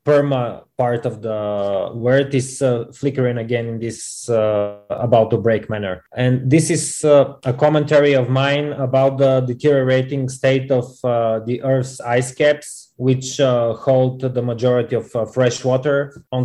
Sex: male